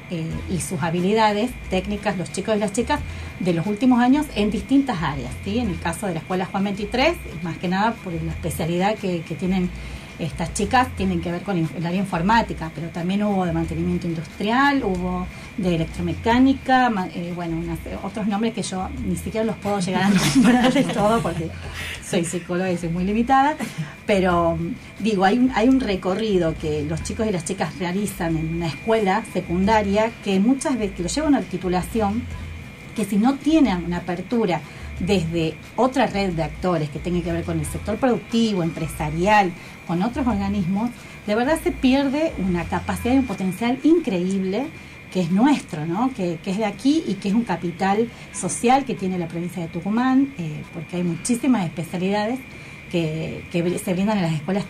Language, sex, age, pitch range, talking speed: Spanish, female, 30-49, 175-230 Hz, 180 wpm